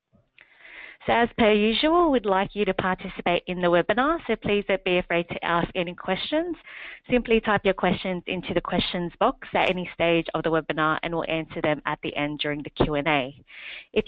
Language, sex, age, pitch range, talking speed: English, female, 20-39, 170-205 Hz, 195 wpm